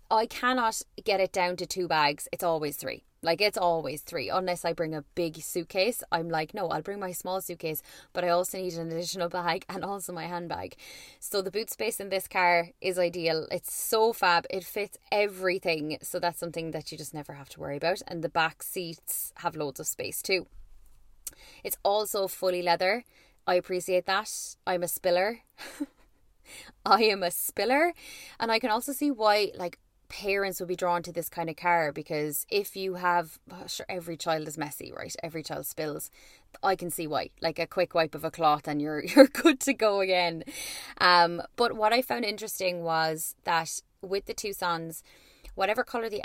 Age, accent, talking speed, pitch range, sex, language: 20-39, Irish, 195 wpm, 165-195 Hz, female, English